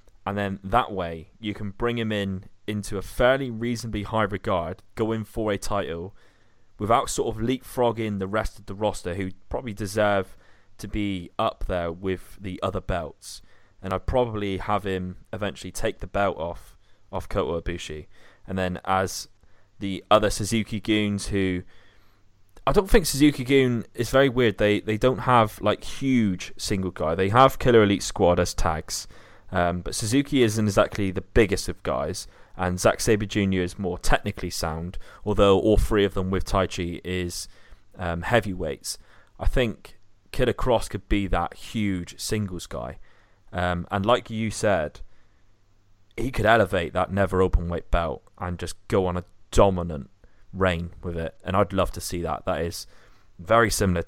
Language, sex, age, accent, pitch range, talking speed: English, male, 20-39, British, 90-105 Hz, 170 wpm